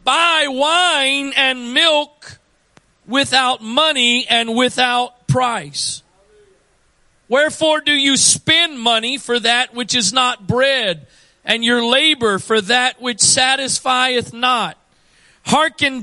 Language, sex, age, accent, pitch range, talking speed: English, male, 40-59, American, 220-270 Hz, 110 wpm